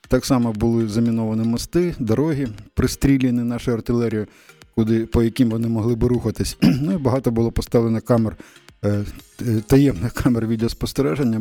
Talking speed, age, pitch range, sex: 130 wpm, 20-39, 110-125 Hz, male